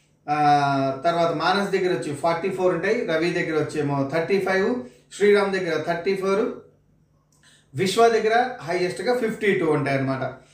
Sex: male